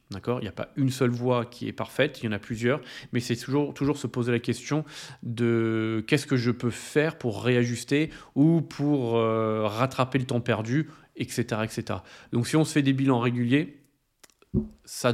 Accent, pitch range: French, 110-135 Hz